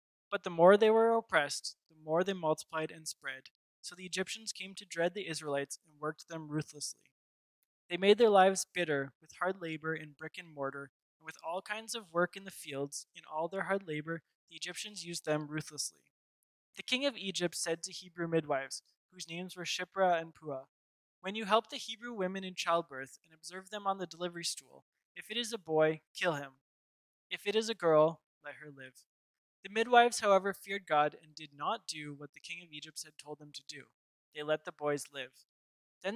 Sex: male